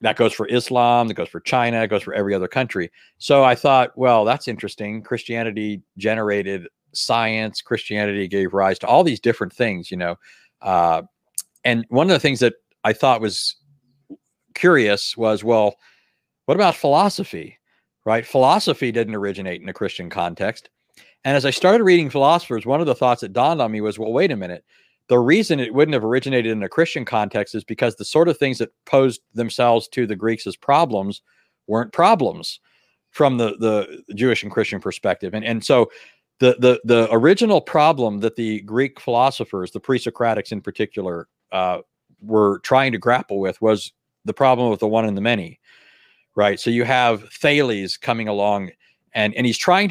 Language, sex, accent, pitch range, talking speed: English, male, American, 105-130 Hz, 180 wpm